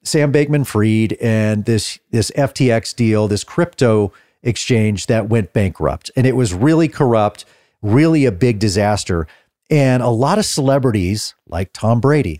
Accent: American